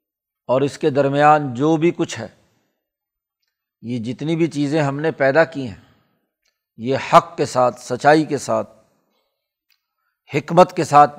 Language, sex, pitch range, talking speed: Urdu, male, 130-155 Hz, 145 wpm